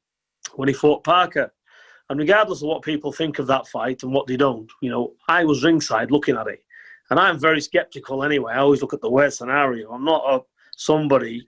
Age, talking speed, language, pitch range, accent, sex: 30-49, 215 wpm, English, 130-160 Hz, British, male